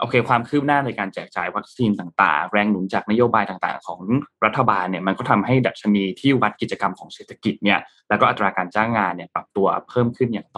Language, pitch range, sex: Thai, 95-120 Hz, male